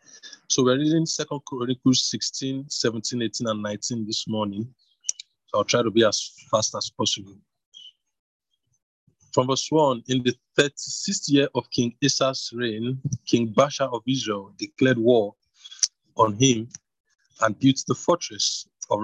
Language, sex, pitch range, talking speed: English, male, 110-135 Hz, 140 wpm